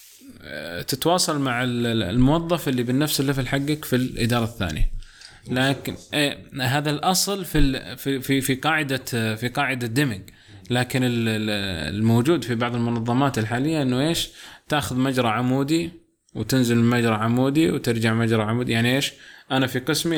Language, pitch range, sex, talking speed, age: Arabic, 115-150 Hz, male, 130 wpm, 20-39